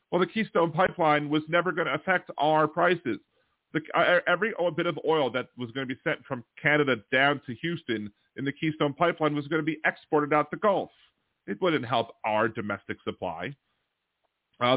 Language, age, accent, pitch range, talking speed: English, 40-59, American, 120-150 Hz, 185 wpm